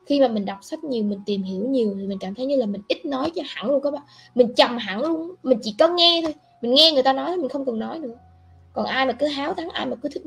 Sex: female